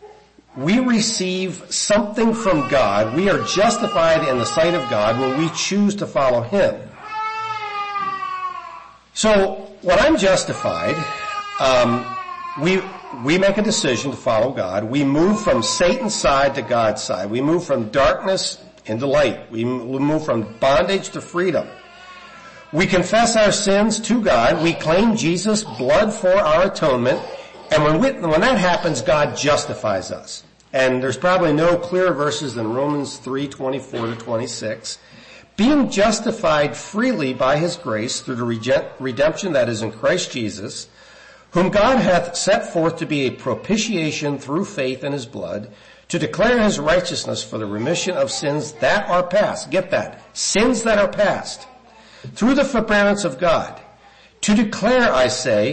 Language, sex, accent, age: English, male, American, 50-69